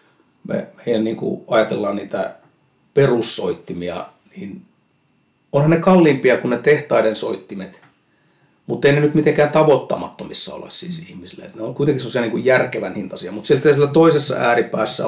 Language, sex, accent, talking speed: Finnish, male, native, 140 wpm